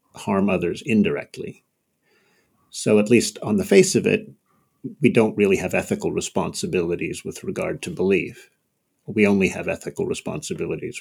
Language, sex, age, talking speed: English, male, 50-69, 140 wpm